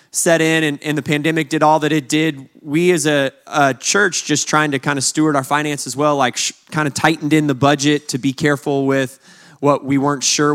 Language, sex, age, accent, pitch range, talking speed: English, male, 20-39, American, 135-155 Hz, 240 wpm